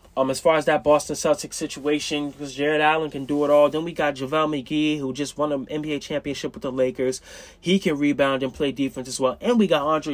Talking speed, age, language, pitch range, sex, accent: 245 wpm, 20-39, English, 125-150 Hz, male, American